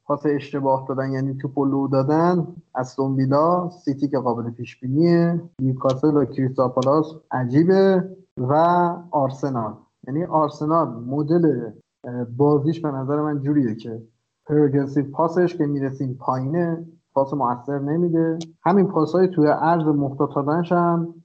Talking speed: 125 wpm